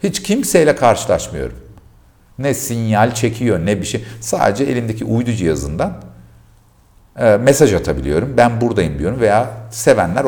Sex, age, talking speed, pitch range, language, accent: male, 50-69, 125 wpm, 75-120 Hz, Turkish, native